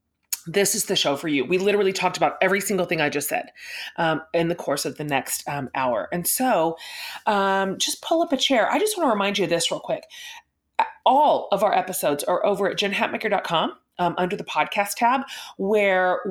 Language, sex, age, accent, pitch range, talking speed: English, female, 30-49, American, 170-215 Hz, 205 wpm